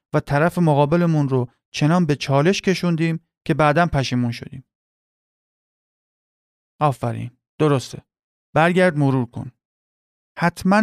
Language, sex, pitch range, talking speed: Persian, male, 125-160 Hz, 100 wpm